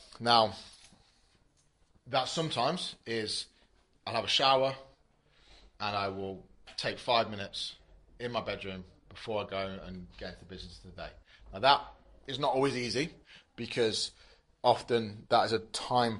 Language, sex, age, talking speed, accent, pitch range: English, male, 30-49, 135 wpm, British, 100-125 Hz